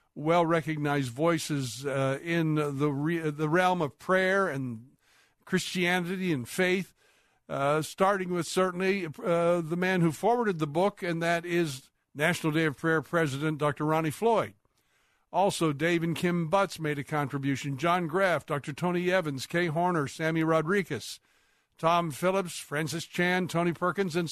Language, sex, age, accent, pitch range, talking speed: English, male, 60-79, American, 150-185 Hz, 150 wpm